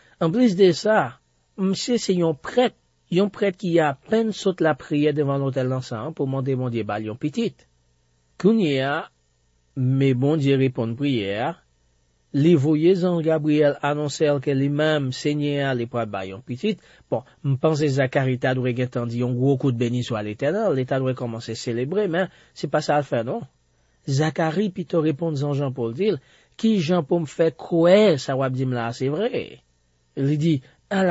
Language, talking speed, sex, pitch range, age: French, 175 wpm, male, 110-155 Hz, 40-59